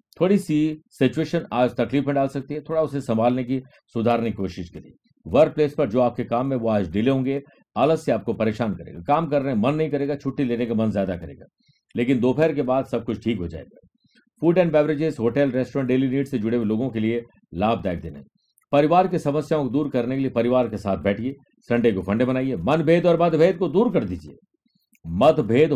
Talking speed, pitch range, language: 215 wpm, 120-150 Hz, Hindi